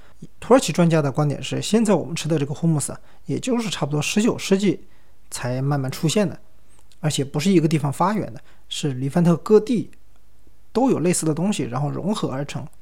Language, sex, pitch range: Chinese, male, 140-190 Hz